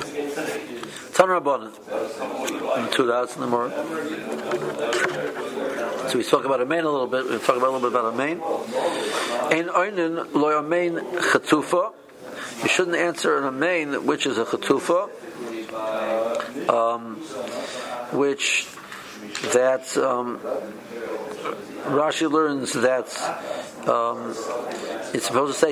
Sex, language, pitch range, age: male, English, 125-160 Hz, 60-79